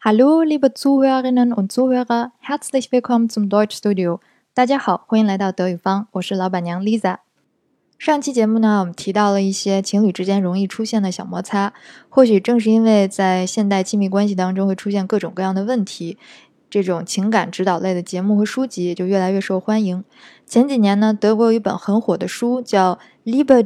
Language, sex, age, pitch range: Chinese, female, 20-39, 190-230 Hz